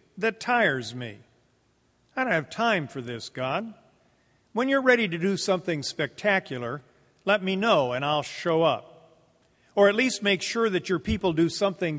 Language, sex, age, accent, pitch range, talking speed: English, male, 50-69, American, 125-160 Hz, 170 wpm